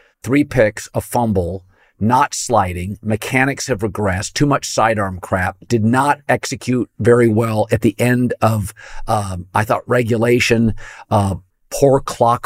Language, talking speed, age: English, 140 wpm, 50-69